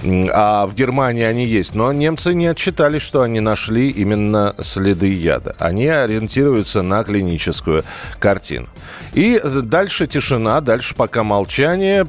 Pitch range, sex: 95-130 Hz, male